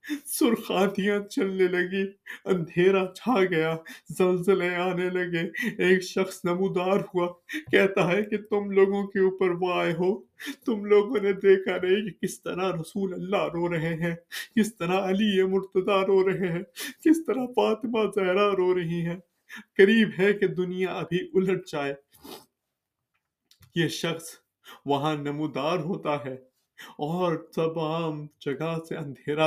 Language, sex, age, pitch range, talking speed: Urdu, male, 30-49, 145-190 Hz, 135 wpm